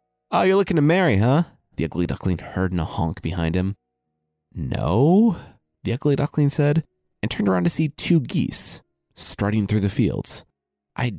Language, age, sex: English, 20-39, male